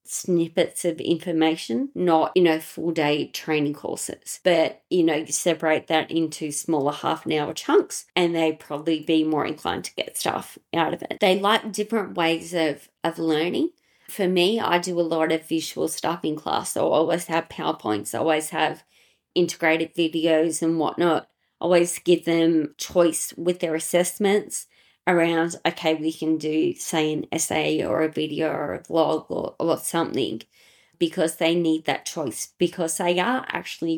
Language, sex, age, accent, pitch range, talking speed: English, female, 20-39, Australian, 160-175 Hz, 170 wpm